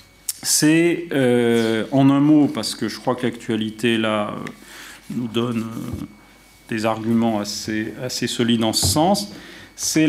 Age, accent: 40-59, French